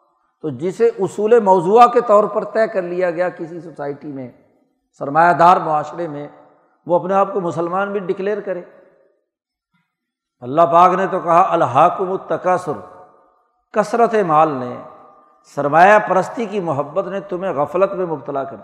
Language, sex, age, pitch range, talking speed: Urdu, male, 60-79, 165-215 Hz, 150 wpm